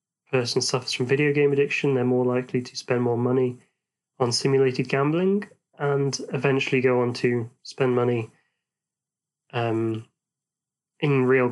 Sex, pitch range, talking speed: male, 125-145 Hz, 135 wpm